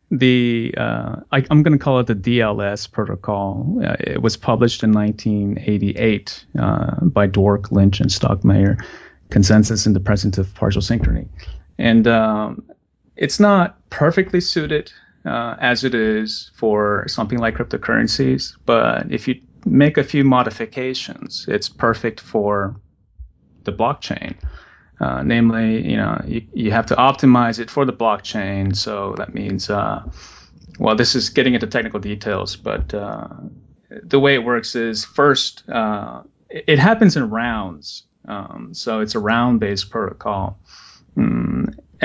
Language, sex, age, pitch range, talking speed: English, male, 30-49, 100-125 Hz, 140 wpm